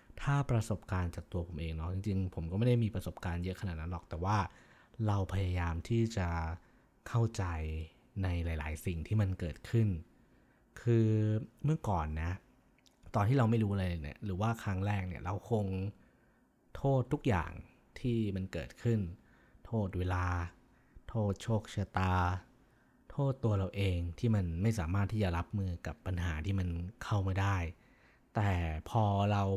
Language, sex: Thai, male